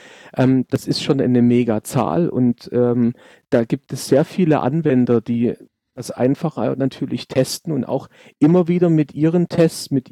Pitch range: 125-155 Hz